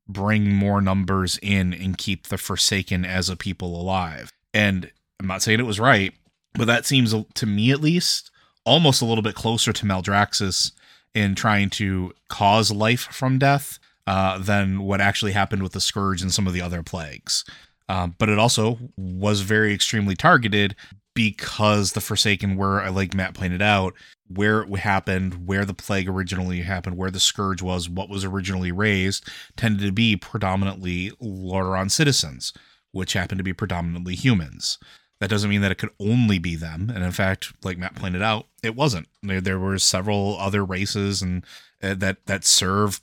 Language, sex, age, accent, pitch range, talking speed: English, male, 30-49, American, 95-105 Hz, 175 wpm